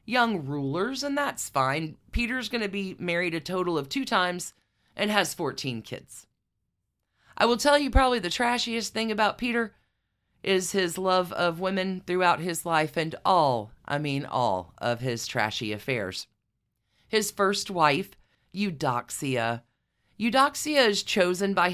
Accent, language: American, English